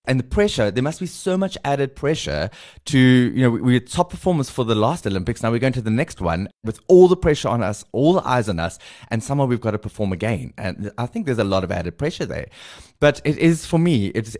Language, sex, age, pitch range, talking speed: English, male, 20-39, 95-125 Hz, 260 wpm